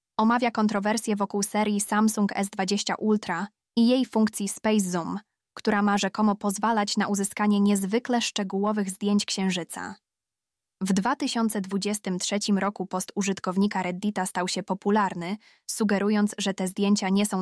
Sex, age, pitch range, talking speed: female, 20-39, 190-210 Hz, 125 wpm